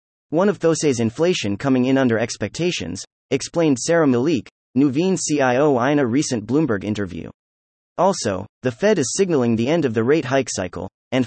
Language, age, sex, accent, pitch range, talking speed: English, 30-49, male, American, 110-155 Hz, 165 wpm